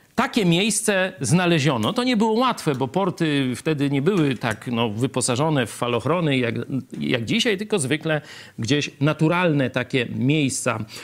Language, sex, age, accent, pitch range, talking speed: Polish, male, 50-69, native, 135-205 Hz, 135 wpm